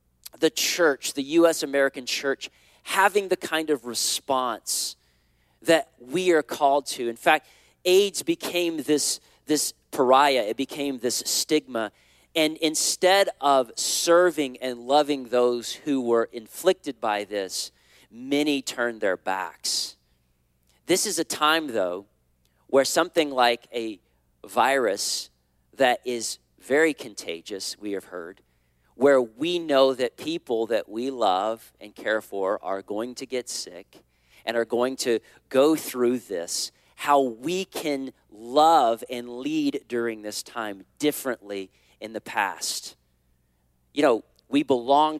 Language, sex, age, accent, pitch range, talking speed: English, male, 40-59, American, 105-150 Hz, 135 wpm